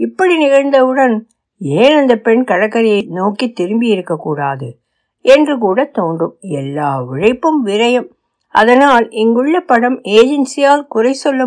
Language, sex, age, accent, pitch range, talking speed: Tamil, female, 60-79, native, 180-270 Hz, 110 wpm